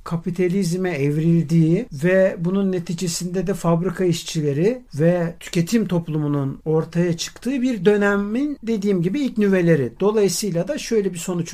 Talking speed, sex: 125 wpm, male